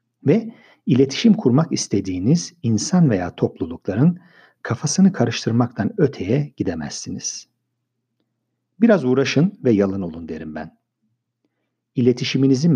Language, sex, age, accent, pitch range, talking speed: Turkish, male, 50-69, native, 105-140 Hz, 90 wpm